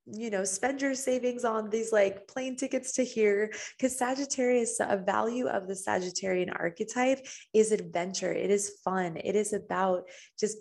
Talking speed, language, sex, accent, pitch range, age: 165 wpm, English, female, American, 180-225 Hz, 20-39